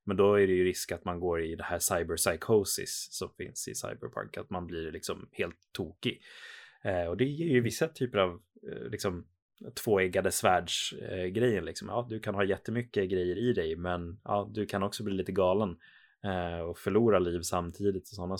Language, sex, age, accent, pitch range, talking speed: Swedish, male, 20-39, native, 90-110 Hz, 195 wpm